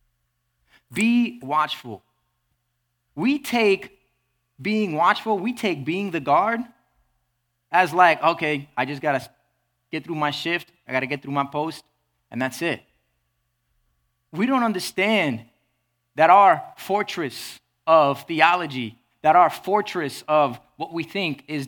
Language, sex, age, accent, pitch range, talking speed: English, male, 20-39, American, 115-175 Hz, 135 wpm